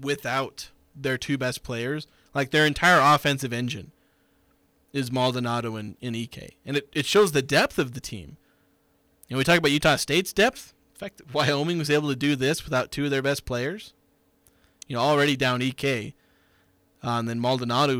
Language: English